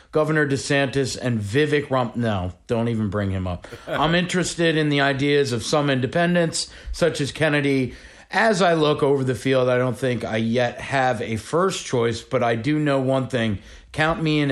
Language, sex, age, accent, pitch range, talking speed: English, male, 40-59, American, 115-140 Hz, 190 wpm